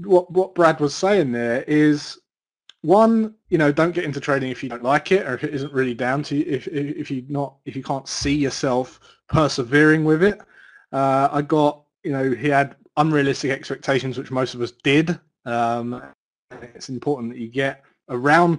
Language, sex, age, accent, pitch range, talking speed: English, male, 30-49, British, 125-155 Hz, 195 wpm